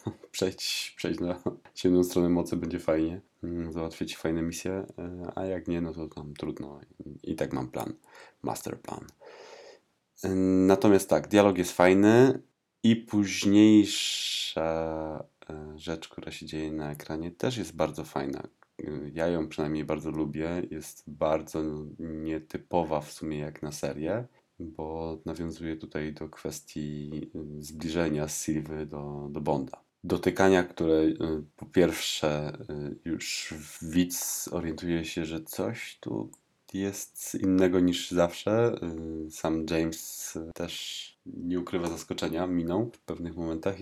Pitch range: 80-90 Hz